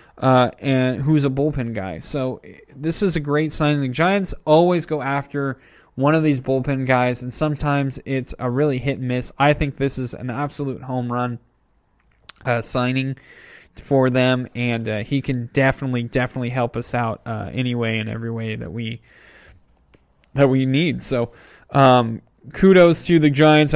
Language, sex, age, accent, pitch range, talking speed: English, male, 20-39, American, 120-145 Hz, 170 wpm